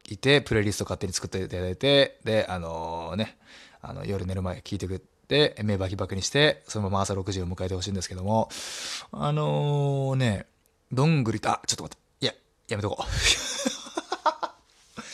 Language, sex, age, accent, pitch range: Japanese, male, 20-39, native, 90-125 Hz